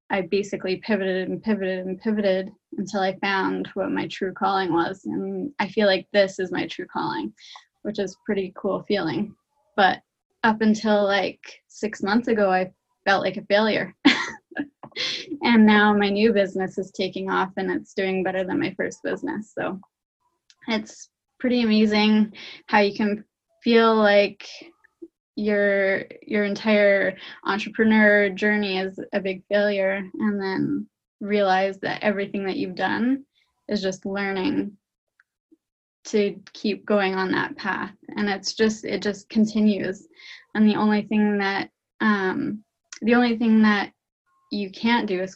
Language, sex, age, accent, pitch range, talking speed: English, female, 10-29, American, 195-220 Hz, 150 wpm